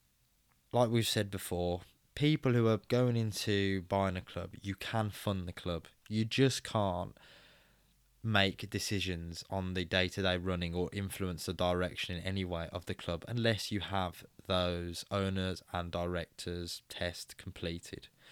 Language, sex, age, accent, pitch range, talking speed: English, male, 20-39, British, 90-110 Hz, 145 wpm